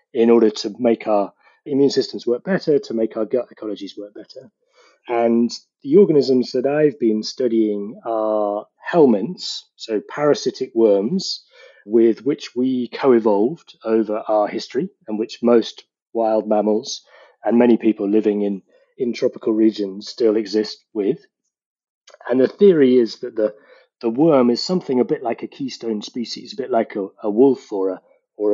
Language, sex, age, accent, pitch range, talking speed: English, male, 30-49, British, 110-135 Hz, 160 wpm